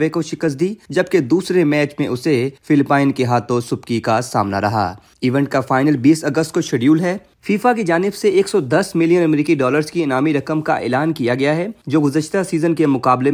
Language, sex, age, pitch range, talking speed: Urdu, male, 30-49, 125-155 Hz, 200 wpm